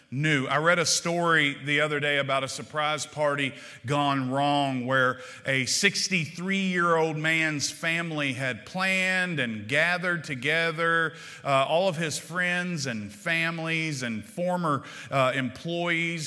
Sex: male